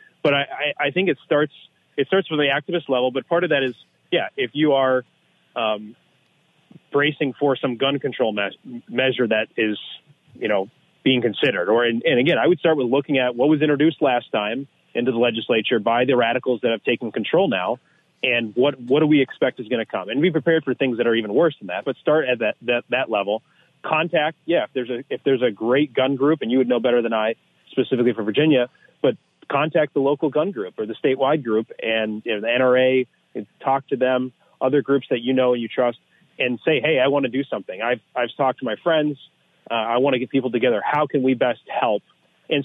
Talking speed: 230 wpm